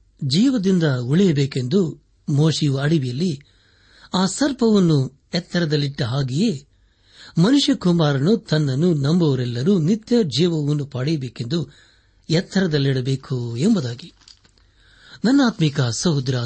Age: 60-79